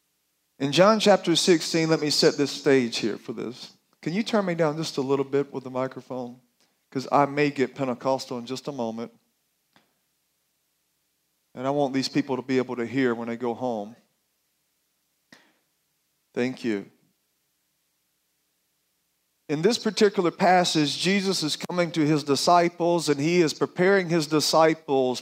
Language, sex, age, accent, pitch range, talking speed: English, male, 40-59, American, 140-185 Hz, 155 wpm